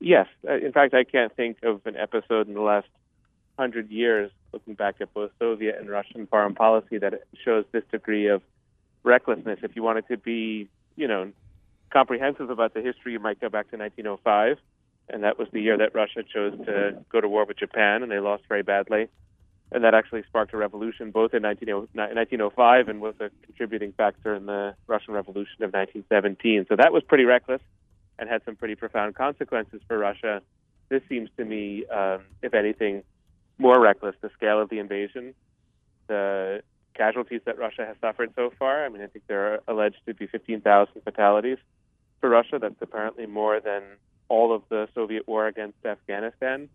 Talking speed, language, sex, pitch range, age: 185 wpm, English, male, 100-115 Hz, 30-49